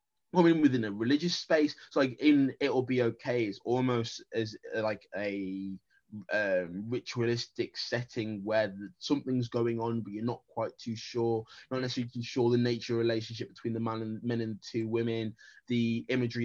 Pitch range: 115-135 Hz